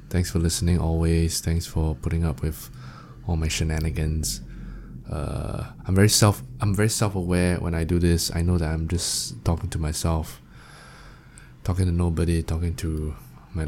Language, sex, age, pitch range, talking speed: English, male, 20-39, 80-100 Hz, 160 wpm